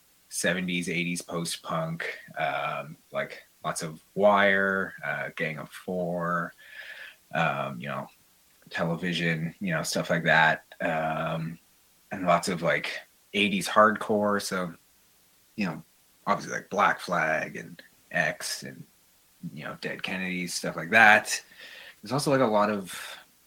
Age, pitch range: 30-49, 85-100 Hz